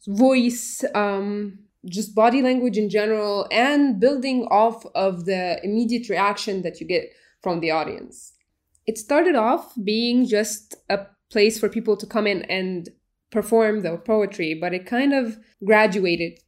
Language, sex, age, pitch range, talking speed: English, female, 20-39, 195-235 Hz, 150 wpm